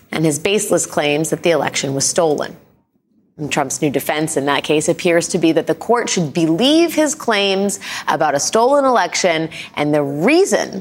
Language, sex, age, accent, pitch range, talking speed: English, female, 30-49, American, 155-205 Hz, 185 wpm